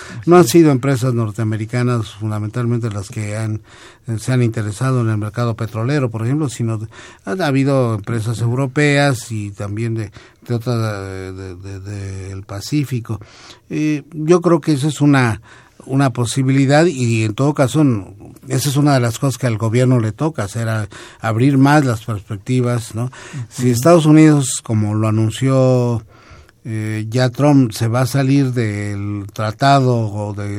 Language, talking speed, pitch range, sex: Spanish, 160 wpm, 110-135 Hz, male